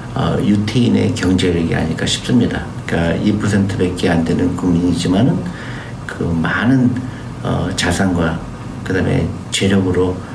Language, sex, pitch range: Korean, male, 85-115 Hz